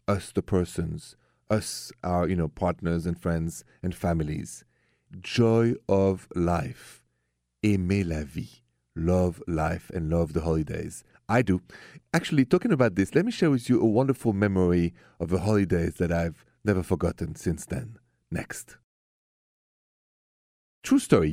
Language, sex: English, male